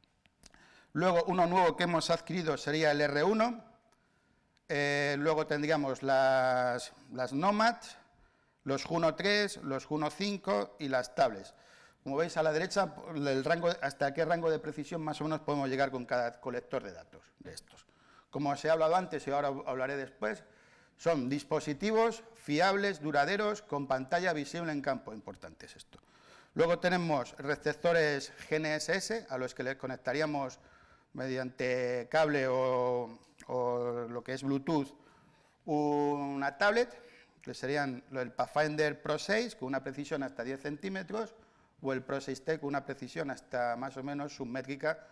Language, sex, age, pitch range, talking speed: Spanish, male, 50-69, 135-165 Hz, 150 wpm